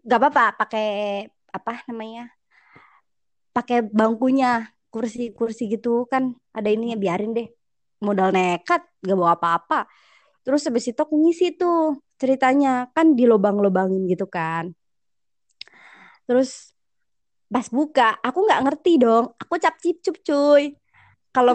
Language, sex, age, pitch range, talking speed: Indonesian, male, 20-39, 225-290 Hz, 115 wpm